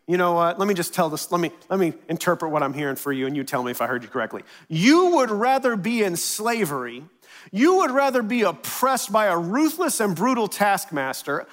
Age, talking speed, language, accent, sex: 40-59, 230 wpm, English, American, male